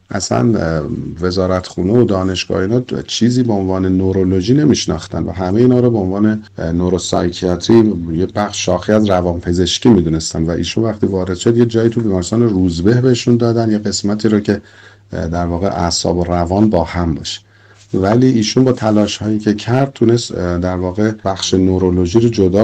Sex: male